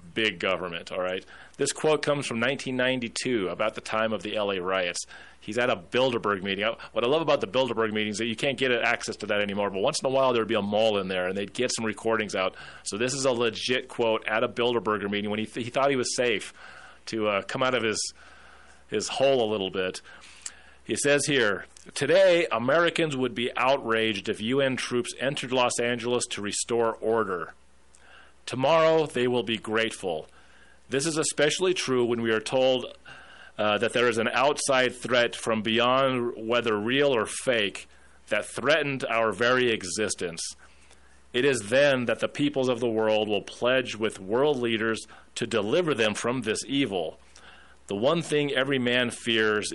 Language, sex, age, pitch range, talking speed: English, male, 30-49, 105-130 Hz, 190 wpm